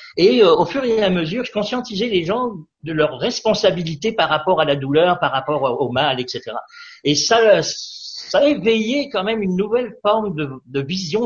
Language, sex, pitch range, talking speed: French, male, 145-220 Hz, 195 wpm